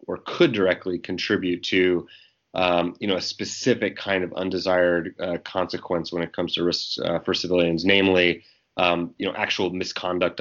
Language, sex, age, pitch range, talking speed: English, male, 30-49, 85-95 Hz, 165 wpm